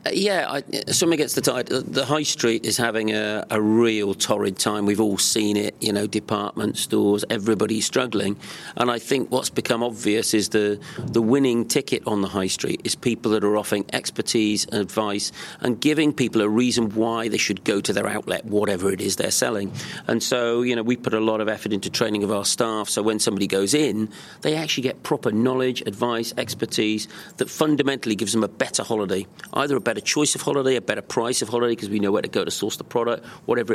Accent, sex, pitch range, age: British, male, 105-125 Hz, 40-59